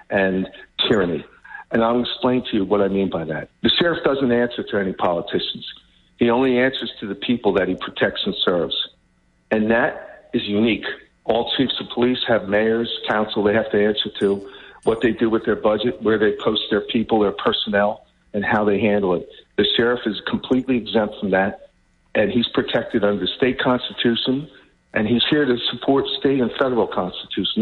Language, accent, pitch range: English, American, 105-125 Hz